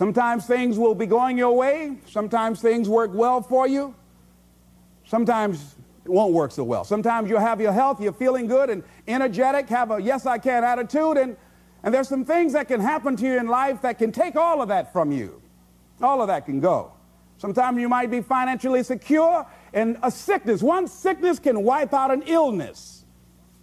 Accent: American